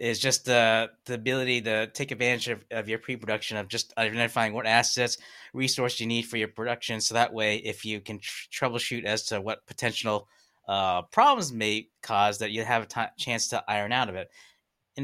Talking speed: 210 wpm